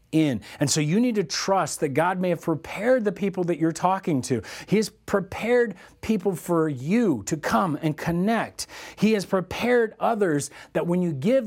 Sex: male